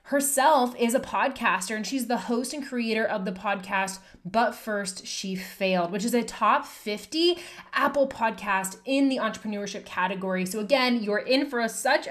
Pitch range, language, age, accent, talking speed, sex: 210-280 Hz, English, 20-39, American, 170 wpm, female